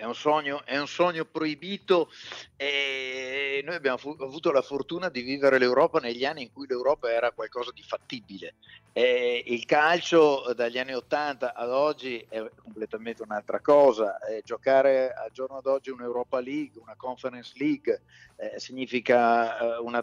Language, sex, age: Italian, male, 50-69